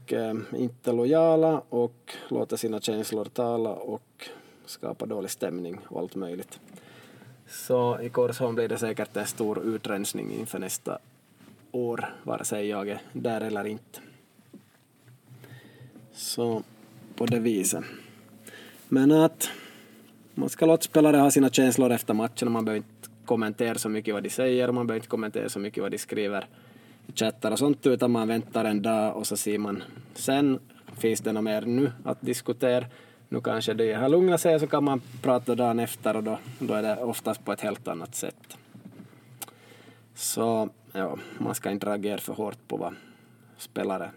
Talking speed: 165 wpm